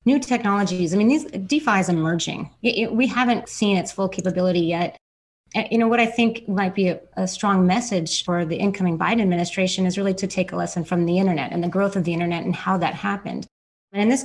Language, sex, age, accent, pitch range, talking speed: English, female, 30-49, American, 175-205 Hz, 235 wpm